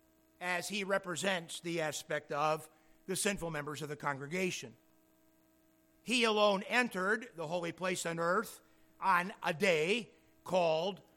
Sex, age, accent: male, 60-79, American